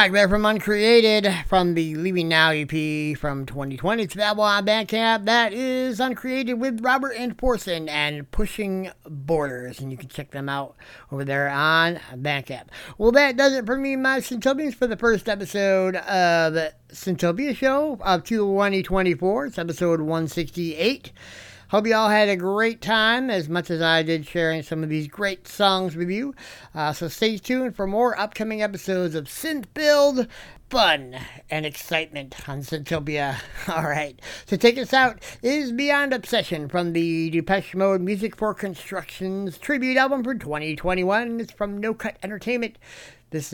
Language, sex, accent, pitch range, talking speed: English, male, American, 155-235 Hz, 160 wpm